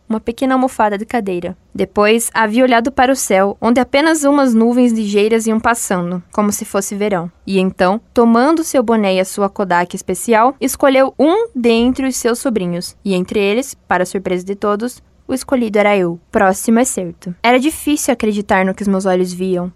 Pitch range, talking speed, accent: 200-250 Hz, 185 wpm, Brazilian